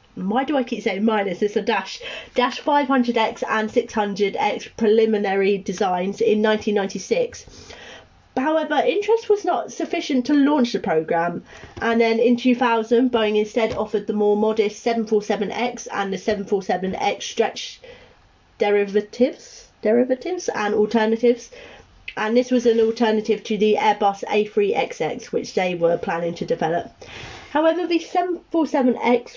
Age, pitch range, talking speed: 30-49, 210-250 Hz, 130 wpm